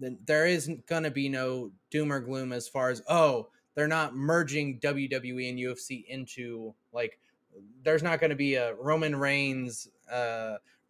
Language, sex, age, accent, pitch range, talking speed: English, male, 20-39, American, 120-145 Hz, 165 wpm